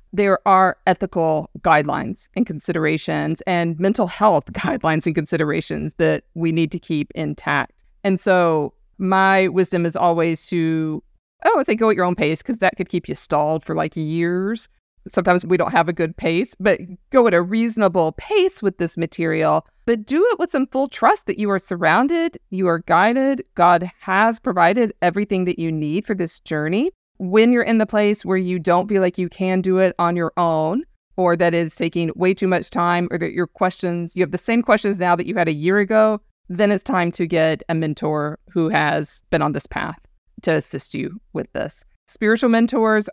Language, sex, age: English, female, 40-59